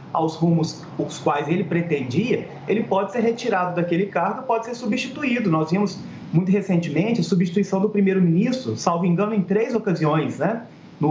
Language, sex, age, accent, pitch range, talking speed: Portuguese, male, 30-49, Brazilian, 170-215 Hz, 160 wpm